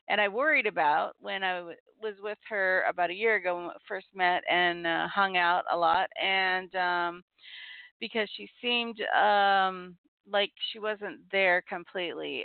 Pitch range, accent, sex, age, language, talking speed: 185-230 Hz, American, female, 40-59, English, 165 wpm